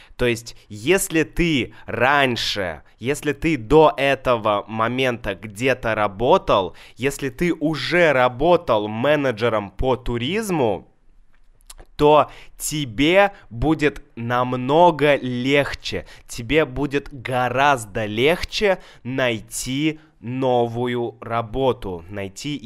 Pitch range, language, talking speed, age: 110-145 Hz, Russian, 85 wpm, 20-39